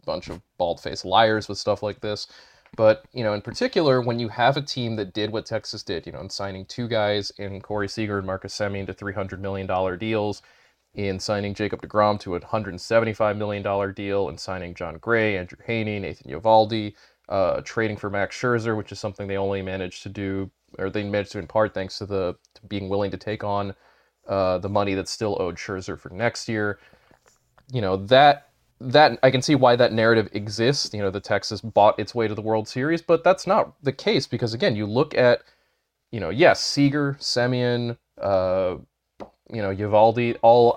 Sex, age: male, 30-49